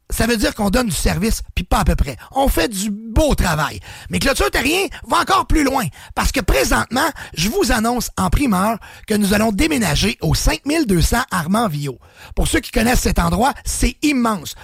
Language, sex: English, male